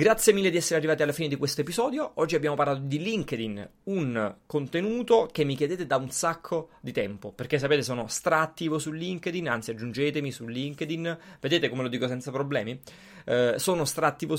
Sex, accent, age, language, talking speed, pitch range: male, native, 30-49, Italian, 185 wpm, 130-160 Hz